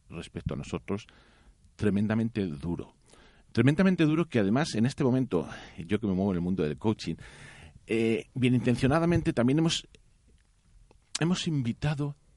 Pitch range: 100-125 Hz